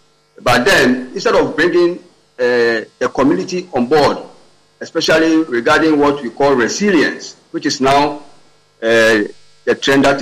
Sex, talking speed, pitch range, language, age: male, 135 wpm, 120-170 Hz, English, 50-69